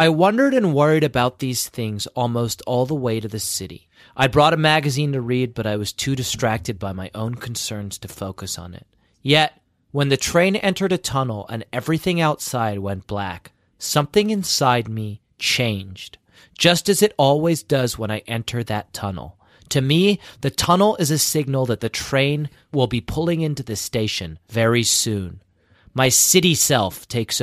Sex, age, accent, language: male, 30-49, American, English